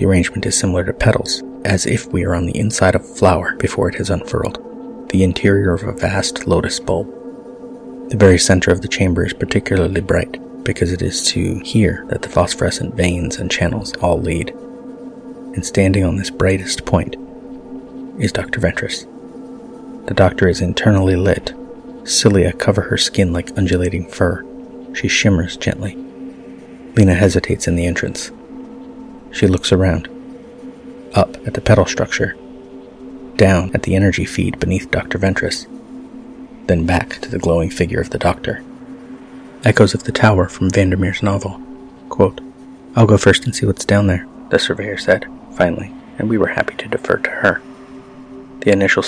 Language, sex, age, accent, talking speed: English, male, 30-49, American, 165 wpm